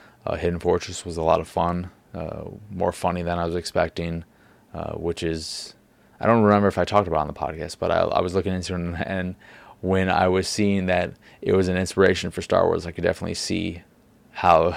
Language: English